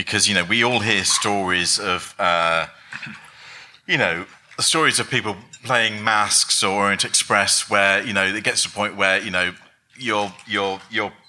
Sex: male